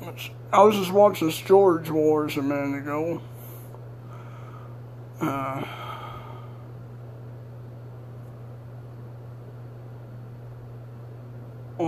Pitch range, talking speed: 120-160 Hz, 55 wpm